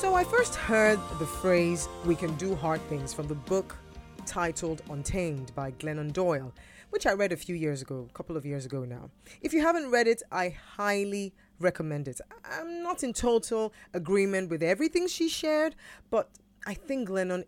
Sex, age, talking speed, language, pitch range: female, 20-39, 185 wpm, English, 155-225 Hz